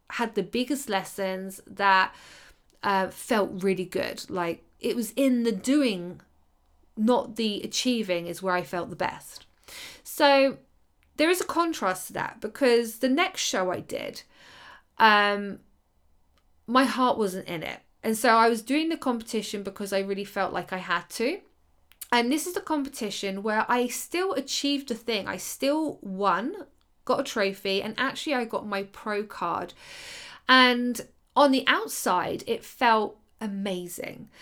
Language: English